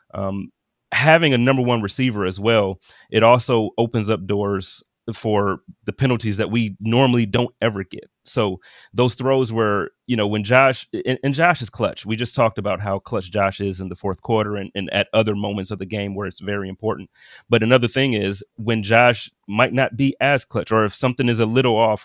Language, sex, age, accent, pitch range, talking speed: English, male, 30-49, American, 100-125 Hz, 210 wpm